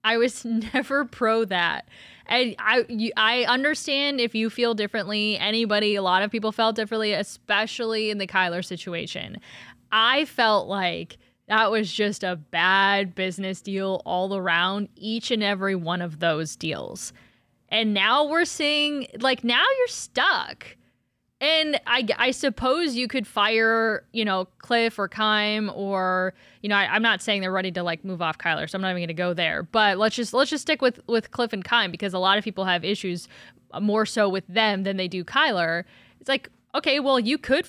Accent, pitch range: American, 200-265 Hz